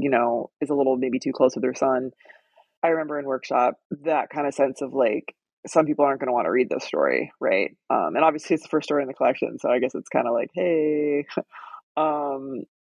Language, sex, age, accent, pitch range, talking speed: English, female, 20-39, American, 140-195 Hz, 240 wpm